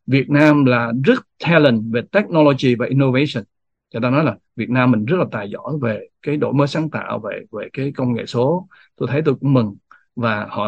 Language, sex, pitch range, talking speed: Vietnamese, male, 120-160 Hz, 220 wpm